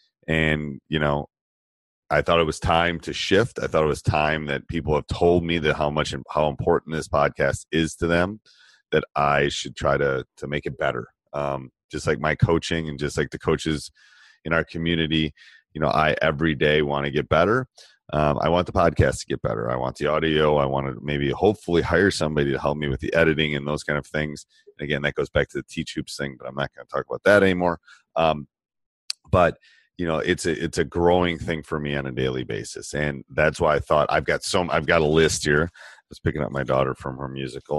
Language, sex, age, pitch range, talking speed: English, male, 30-49, 70-85 Hz, 235 wpm